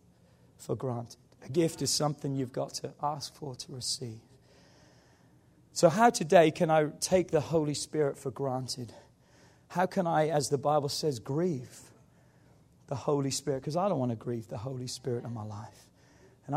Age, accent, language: 40-59, British, English